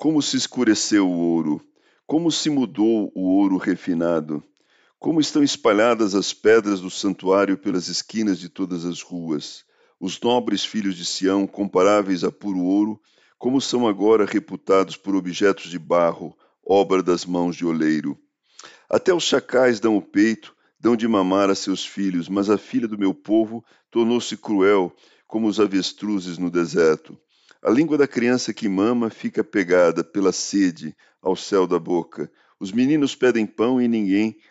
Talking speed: 160 wpm